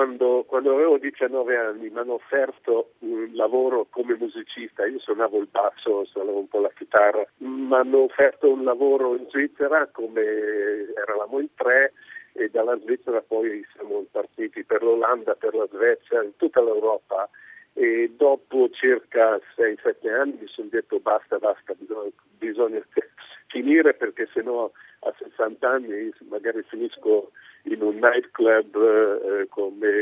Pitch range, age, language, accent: 320-440 Hz, 50-69, Italian, native